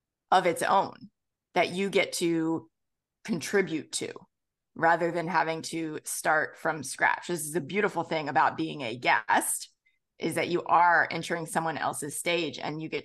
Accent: American